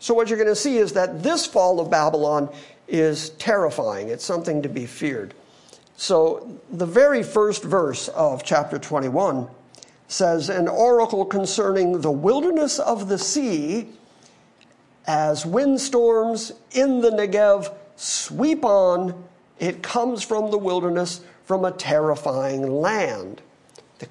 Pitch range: 150-205 Hz